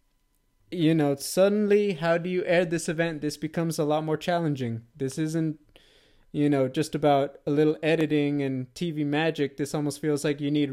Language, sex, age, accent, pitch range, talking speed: English, male, 20-39, American, 135-165 Hz, 185 wpm